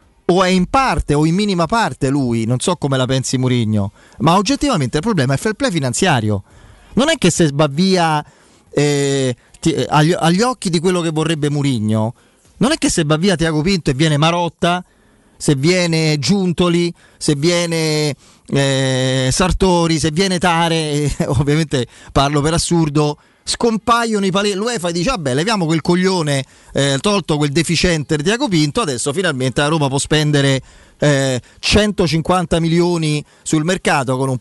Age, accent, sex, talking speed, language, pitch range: 30-49, native, male, 165 wpm, Italian, 140-175 Hz